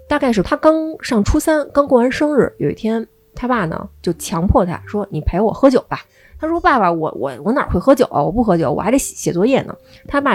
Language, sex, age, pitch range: Chinese, female, 20-39, 175-260 Hz